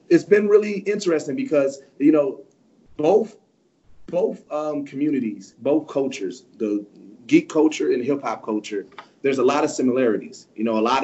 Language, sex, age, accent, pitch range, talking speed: English, male, 30-49, American, 115-155 Hz, 160 wpm